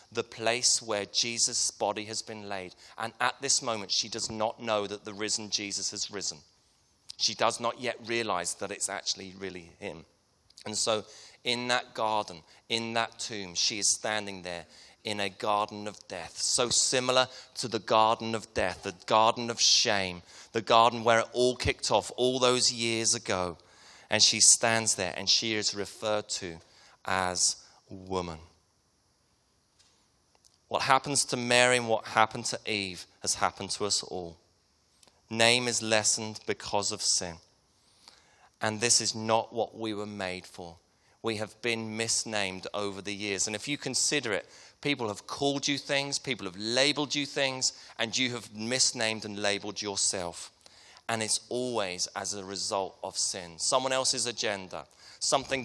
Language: English